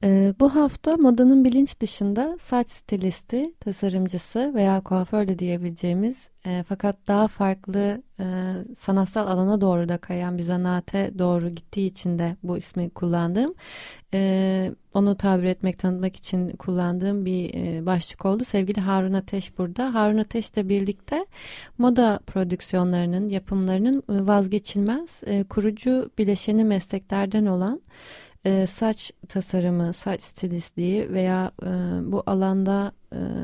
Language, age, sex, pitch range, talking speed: Turkish, 30-49, female, 185-225 Hz, 110 wpm